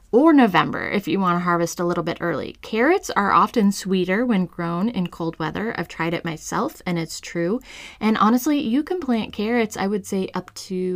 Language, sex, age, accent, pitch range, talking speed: English, female, 20-39, American, 170-205 Hz, 210 wpm